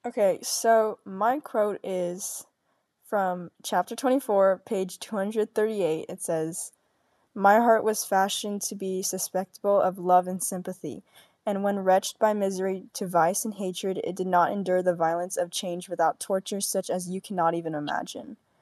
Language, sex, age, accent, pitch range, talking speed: English, female, 10-29, American, 180-215 Hz, 155 wpm